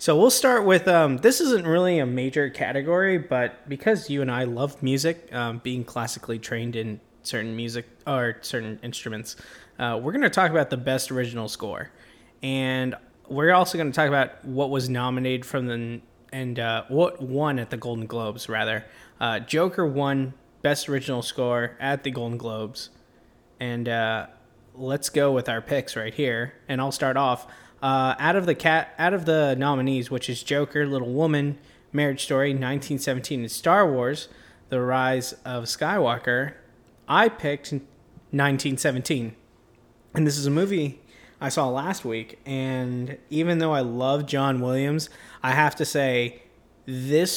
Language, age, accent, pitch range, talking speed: English, 20-39, American, 120-145 Hz, 160 wpm